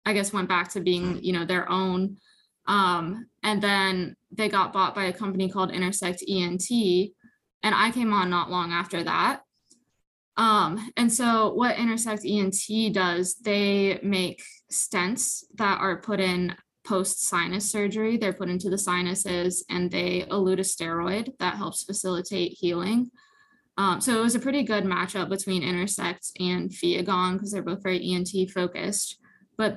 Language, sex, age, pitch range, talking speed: English, female, 20-39, 185-215 Hz, 160 wpm